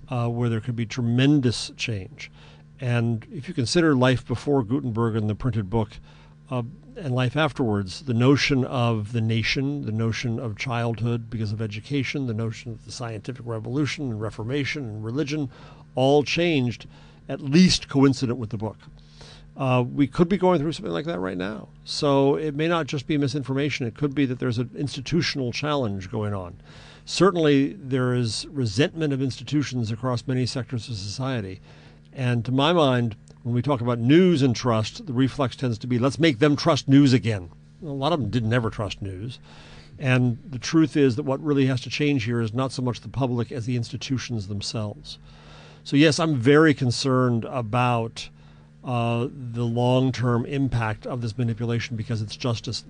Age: 50-69